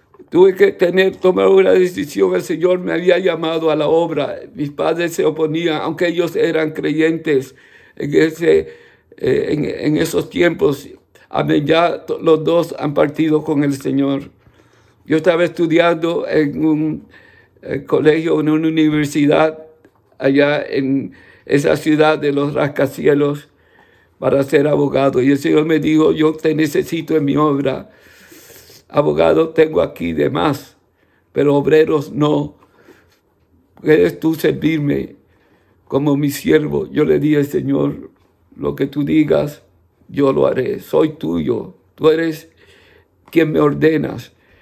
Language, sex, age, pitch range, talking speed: English, male, 60-79, 145-160 Hz, 130 wpm